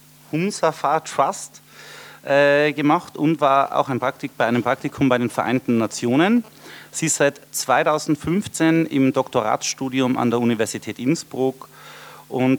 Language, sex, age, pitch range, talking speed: German, male, 30-49, 125-155 Hz, 130 wpm